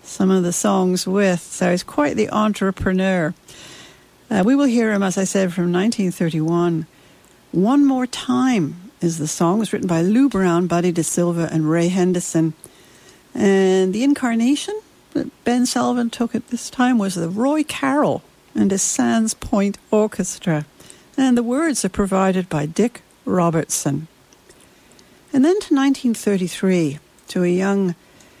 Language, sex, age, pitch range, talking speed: English, female, 60-79, 165-215 Hz, 150 wpm